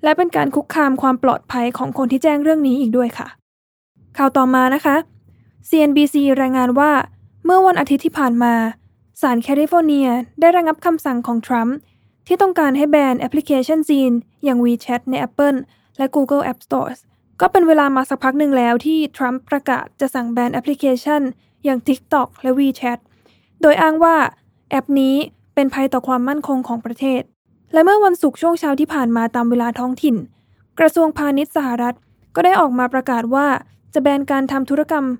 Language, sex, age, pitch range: Thai, female, 10-29, 255-300 Hz